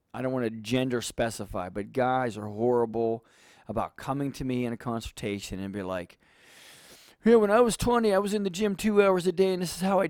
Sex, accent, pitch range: male, American, 110-155 Hz